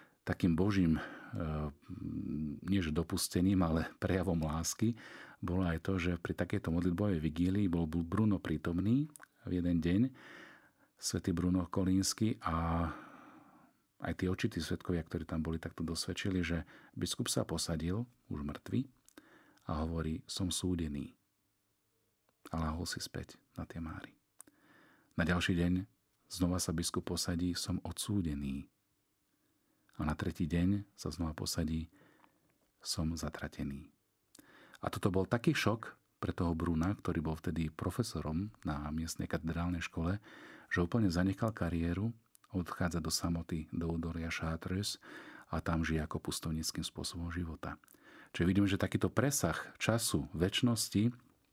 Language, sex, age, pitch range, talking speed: Slovak, male, 40-59, 80-100 Hz, 125 wpm